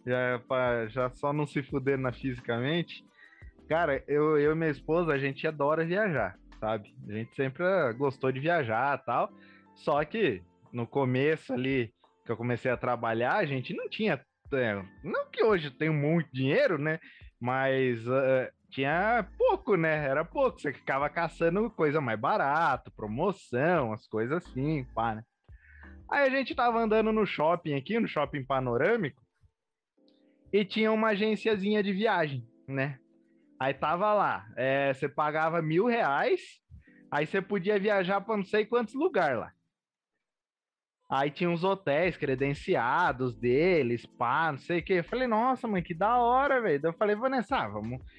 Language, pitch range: Portuguese, 130-210 Hz